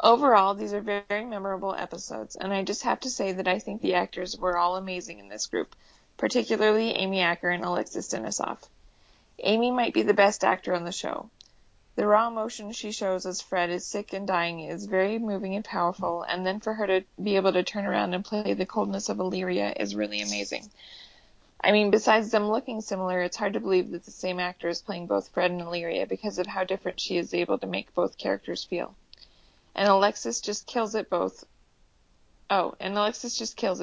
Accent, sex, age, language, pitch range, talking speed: American, female, 20-39, English, 180-210 Hz, 205 wpm